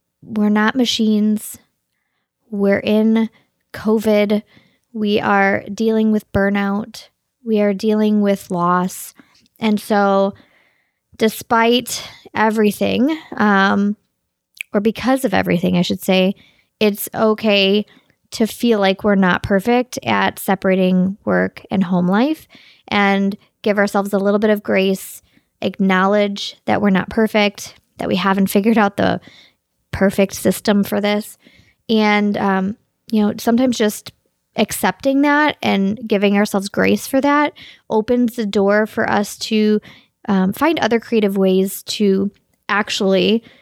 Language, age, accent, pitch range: English, 20-39, American, 195-225 Hz